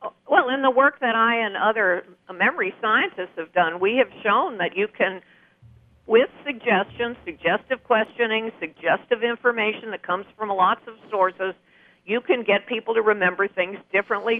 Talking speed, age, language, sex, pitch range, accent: 160 wpm, 50-69, English, female, 190-245 Hz, American